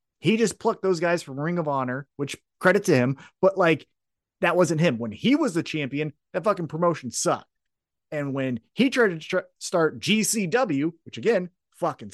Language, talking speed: English, 185 wpm